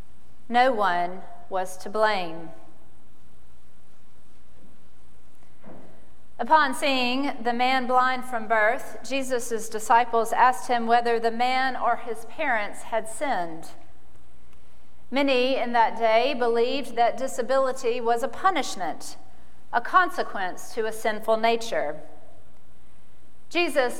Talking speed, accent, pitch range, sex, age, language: 105 wpm, American, 210-260 Hz, female, 40-59, English